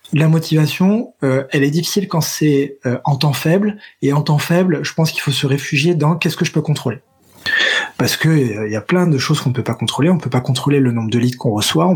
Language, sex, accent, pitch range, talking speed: French, male, French, 130-165 Hz, 265 wpm